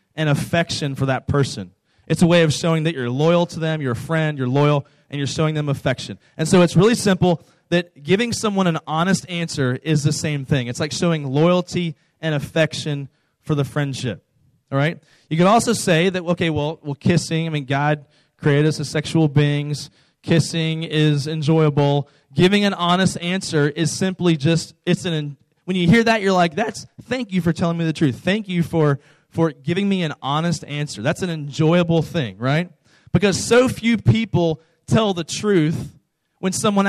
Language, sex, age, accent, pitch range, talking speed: English, male, 20-39, American, 145-175 Hz, 190 wpm